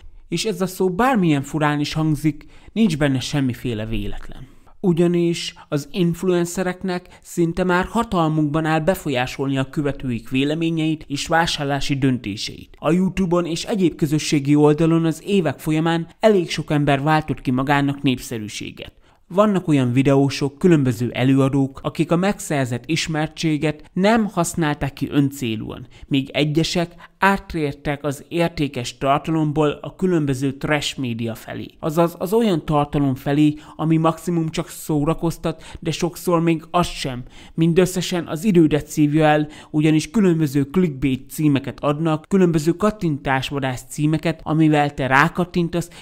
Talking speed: 125 wpm